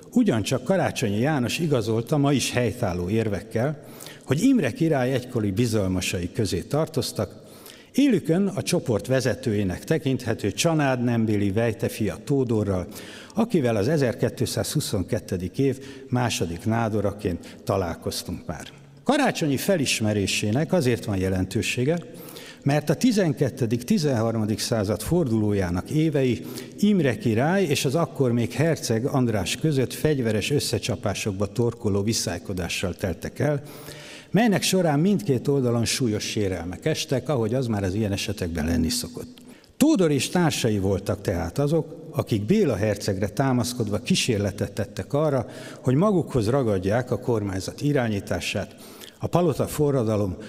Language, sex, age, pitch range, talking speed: Hungarian, male, 60-79, 105-150 Hz, 115 wpm